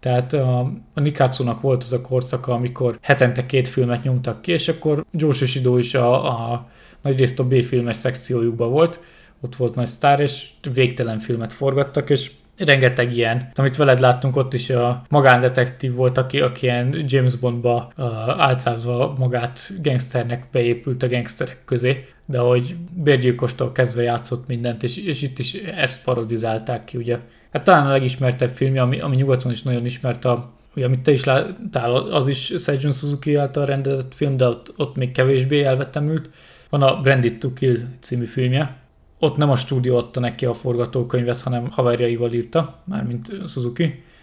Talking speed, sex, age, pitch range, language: 165 wpm, male, 20-39, 125-140 Hz, Hungarian